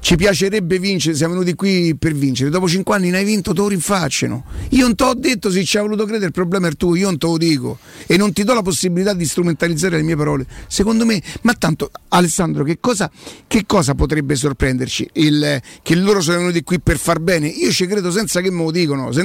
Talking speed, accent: 240 wpm, native